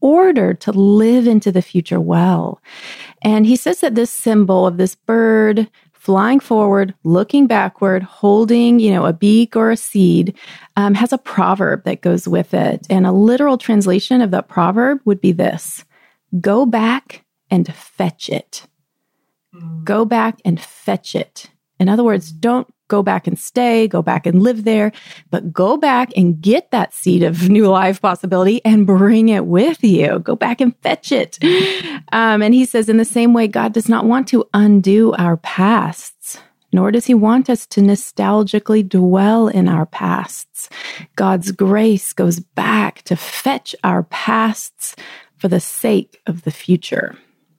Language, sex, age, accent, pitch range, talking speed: English, female, 30-49, American, 185-230 Hz, 165 wpm